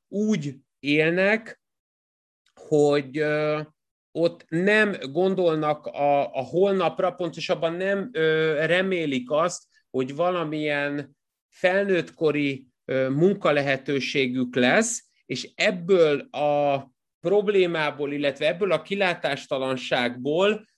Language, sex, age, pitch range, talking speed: Hungarian, male, 30-49, 140-185 Hz, 75 wpm